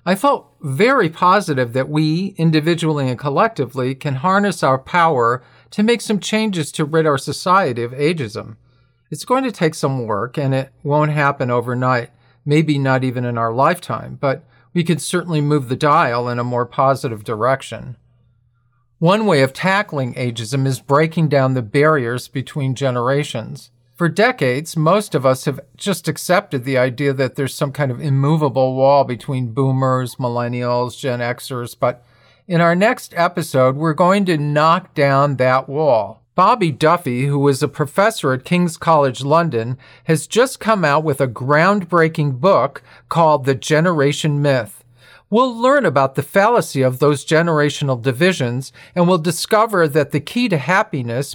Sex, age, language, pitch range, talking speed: male, 50-69, English, 130-170 Hz, 160 wpm